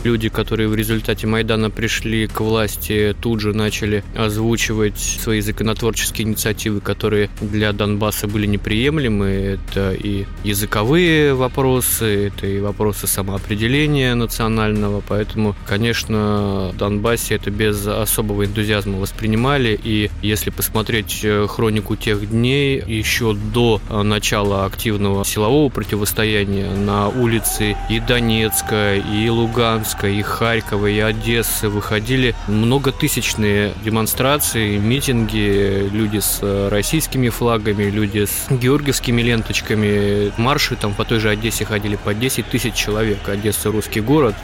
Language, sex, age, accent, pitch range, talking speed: Russian, male, 20-39, native, 105-115 Hz, 115 wpm